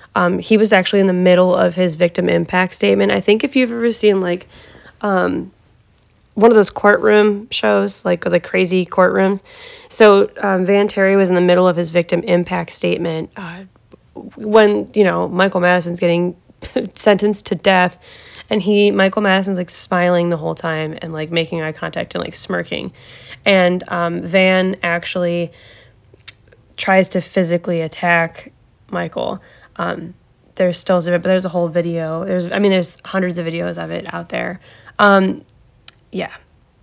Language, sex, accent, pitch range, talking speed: English, female, American, 170-195 Hz, 165 wpm